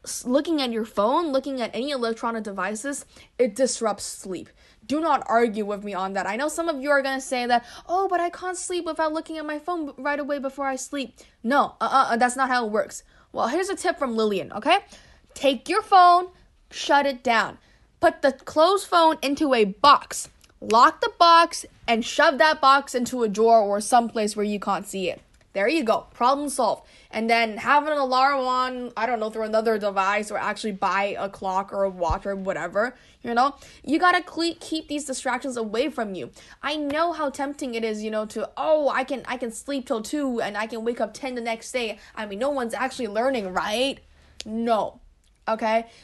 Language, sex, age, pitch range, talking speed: English, female, 10-29, 220-290 Hz, 210 wpm